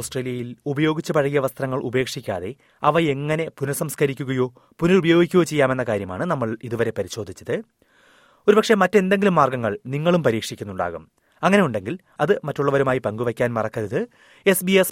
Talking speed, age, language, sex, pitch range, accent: 100 wpm, 30-49, Malayalam, male, 120-160 Hz, native